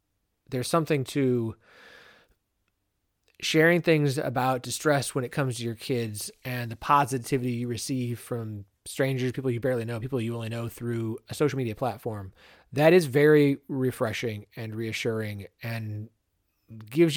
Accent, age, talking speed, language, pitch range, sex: American, 30-49, 145 wpm, English, 105-145 Hz, male